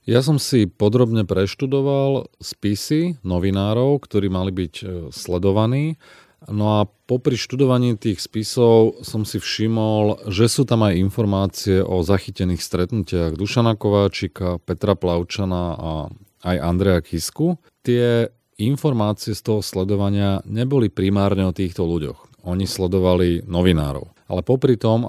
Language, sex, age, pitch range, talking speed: Slovak, male, 40-59, 95-110 Hz, 125 wpm